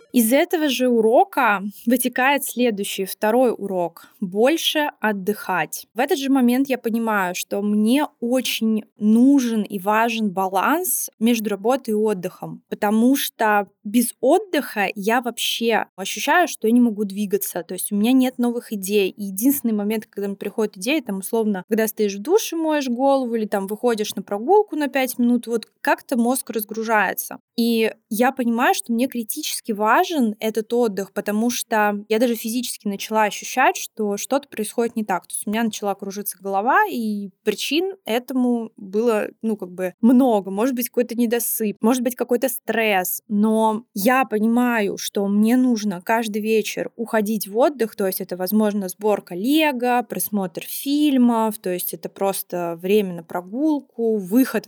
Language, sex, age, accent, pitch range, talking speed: Russian, female, 20-39, native, 205-250 Hz, 160 wpm